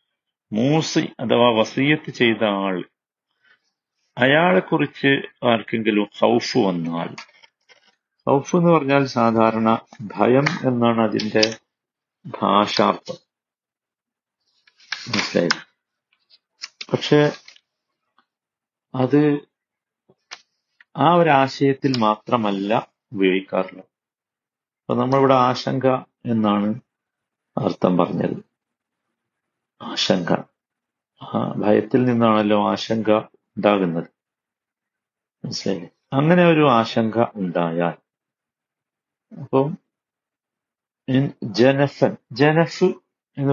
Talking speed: 60 wpm